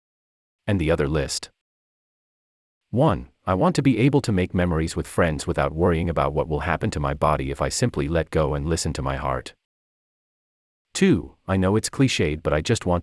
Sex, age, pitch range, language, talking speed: male, 40-59, 75-105 Hz, English, 200 wpm